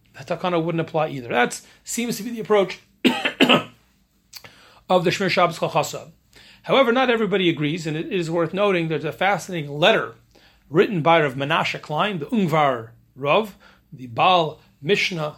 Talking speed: 155 wpm